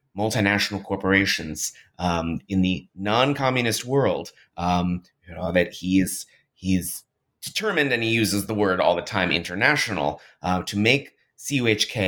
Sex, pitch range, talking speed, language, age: male, 95-125 Hz, 145 wpm, English, 30-49